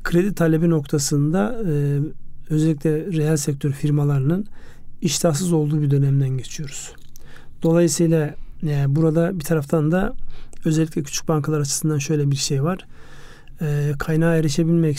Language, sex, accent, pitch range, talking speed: Turkish, male, native, 145-165 Hz, 110 wpm